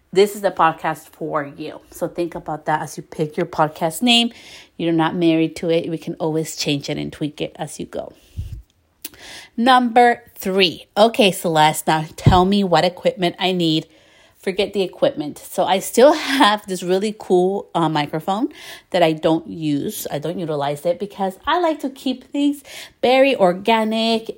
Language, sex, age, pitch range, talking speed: English, female, 30-49, 165-220 Hz, 175 wpm